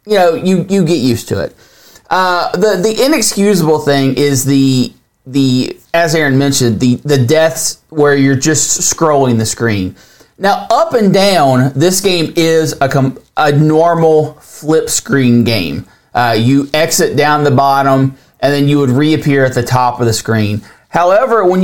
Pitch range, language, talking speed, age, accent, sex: 135-200 Hz, English, 170 wpm, 30-49, American, male